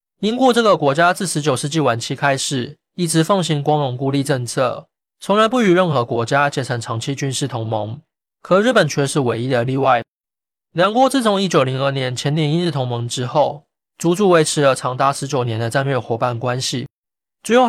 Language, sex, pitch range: Chinese, male, 125-165 Hz